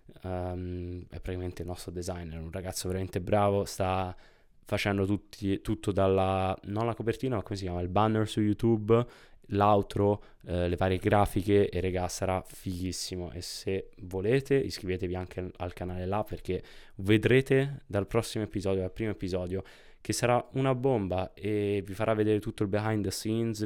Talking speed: 165 wpm